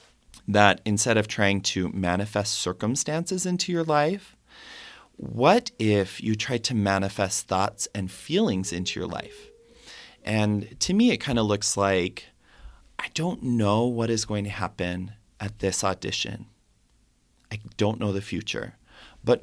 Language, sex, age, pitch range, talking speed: English, male, 30-49, 100-130 Hz, 145 wpm